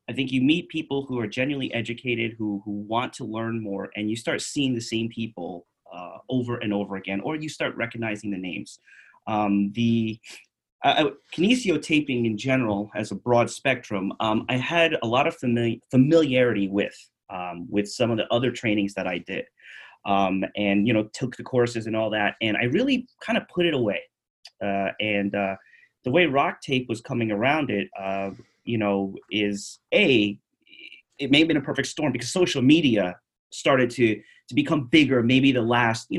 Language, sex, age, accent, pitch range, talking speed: English, male, 30-49, American, 105-135 Hz, 190 wpm